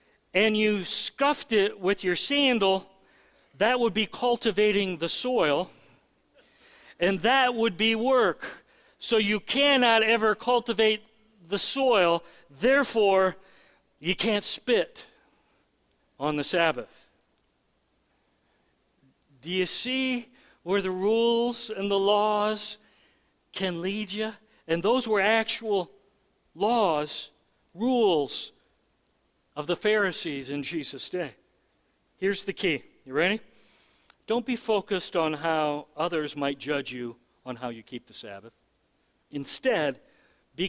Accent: American